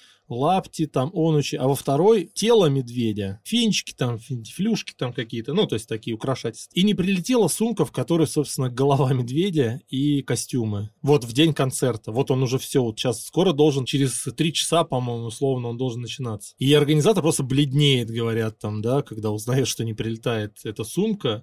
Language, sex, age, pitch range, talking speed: Russian, male, 20-39, 120-155 Hz, 175 wpm